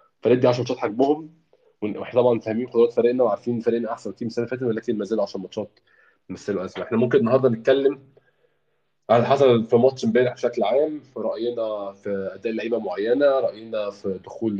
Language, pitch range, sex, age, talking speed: Arabic, 100-125 Hz, male, 20-39, 185 wpm